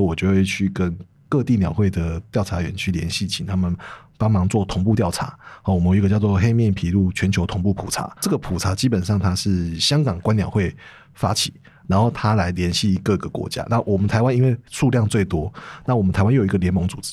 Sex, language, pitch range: male, Chinese, 95-130 Hz